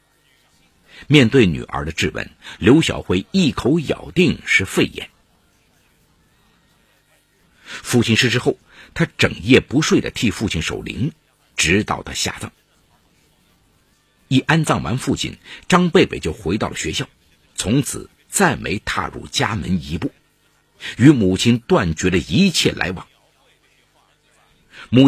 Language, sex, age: Chinese, male, 50-69